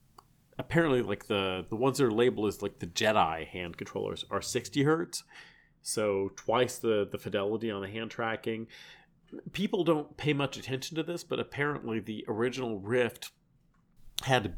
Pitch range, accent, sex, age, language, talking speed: 100-135 Hz, American, male, 40-59, English, 160 wpm